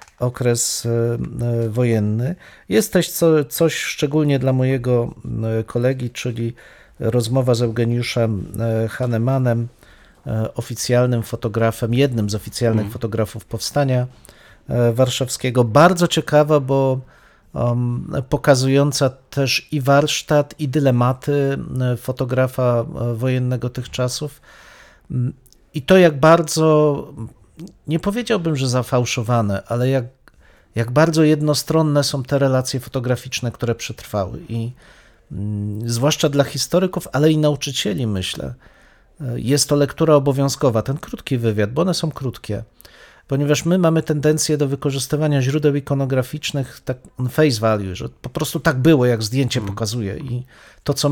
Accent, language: native, Polish